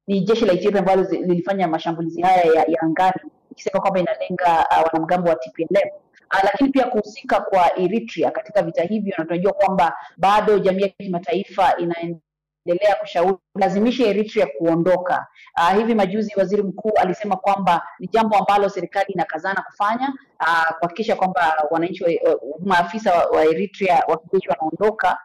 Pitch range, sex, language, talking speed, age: 170-210 Hz, female, Swahili, 145 wpm, 30-49